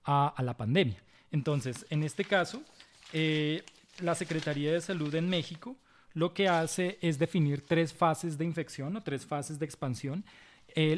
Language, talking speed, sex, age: Spanish, 165 wpm, male, 20-39